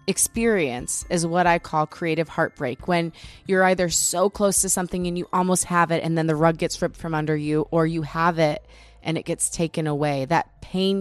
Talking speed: 215 wpm